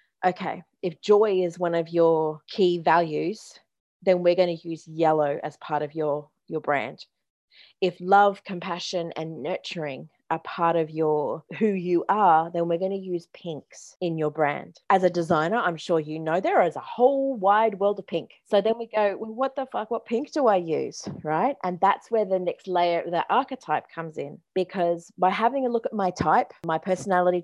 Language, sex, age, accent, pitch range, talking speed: English, female, 30-49, Australian, 165-195 Hz, 200 wpm